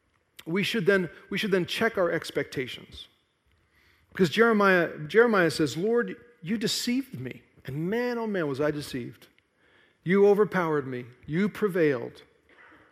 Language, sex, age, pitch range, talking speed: English, male, 40-59, 155-215 Hz, 135 wpm